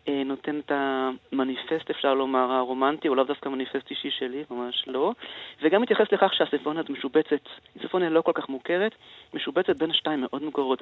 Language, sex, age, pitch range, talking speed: Hebrew, male, 30-49, 125-155 Hz, 160 wpm